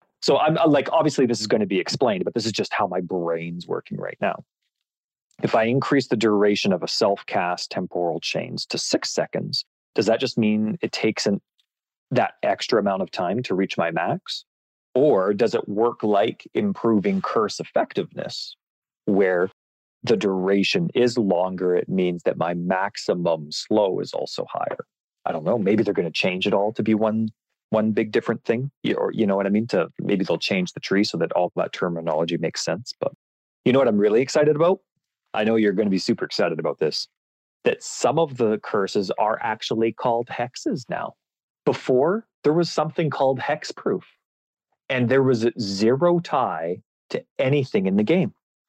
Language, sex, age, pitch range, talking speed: English, male, 30-49, 100-150 Hz, 185 wpm